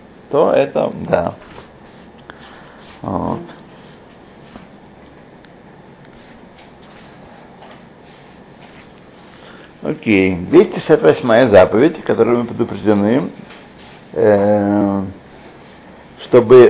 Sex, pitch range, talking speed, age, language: male, 115-190 Hz, 45 wpm, 60-79, Russian